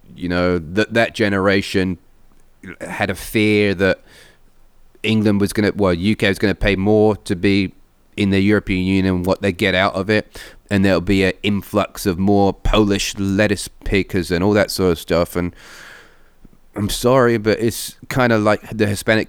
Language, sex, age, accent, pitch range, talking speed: English, male, 30-49, British, 95-110 Hz, 180 wpm